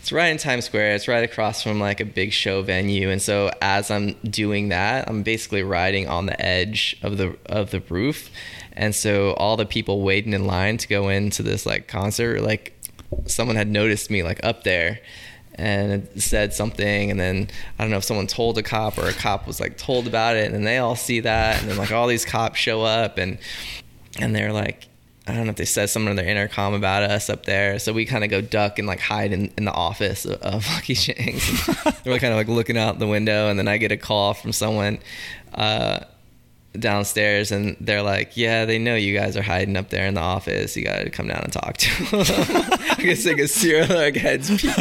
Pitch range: 100-115 Hz